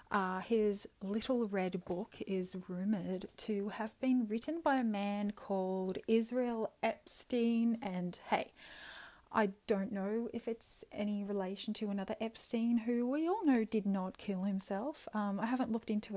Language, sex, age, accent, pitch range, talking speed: English, female, 30-49, Australian, 185-235 Hz, 155 wpm